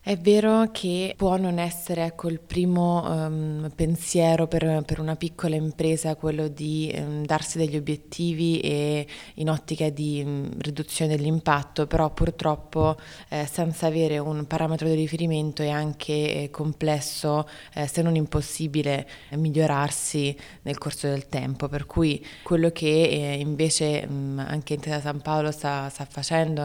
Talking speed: 145 wpm